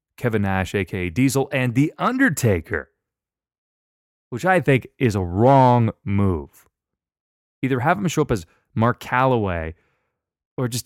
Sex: male